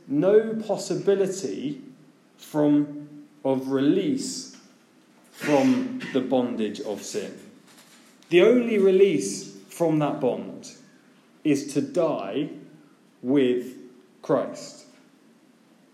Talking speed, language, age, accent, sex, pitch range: 80 wpm, English, 20-39, British, male, 135-225 Hz